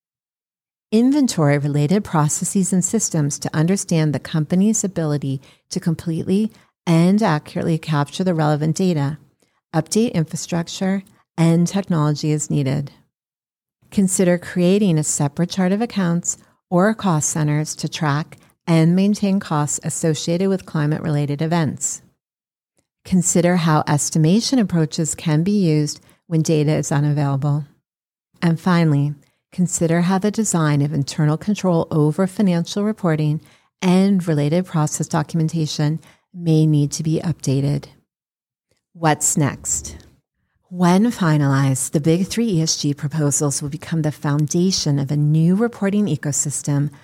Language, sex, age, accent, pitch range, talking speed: English, female, 40-59, American, 150-180 Hz, 115 wpm